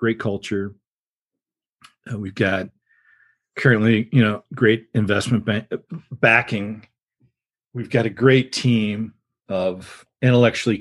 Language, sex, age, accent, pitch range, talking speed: English, male, 40-59, American, 100-125 Hz, 100 wpm